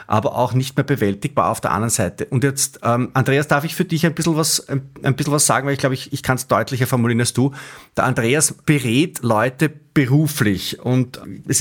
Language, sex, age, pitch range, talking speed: German, male, 30-49, 115-145 Hz, 215 wpm